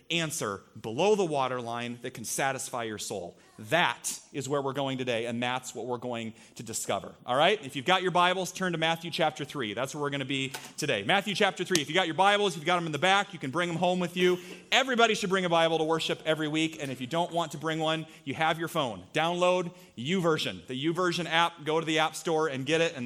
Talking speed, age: 255 wpm, 30-49